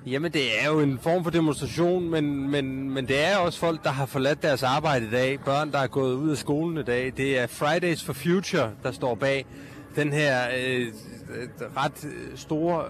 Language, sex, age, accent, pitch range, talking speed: Danish, male, 30-49, native, 125-155 Hz, 205 wpm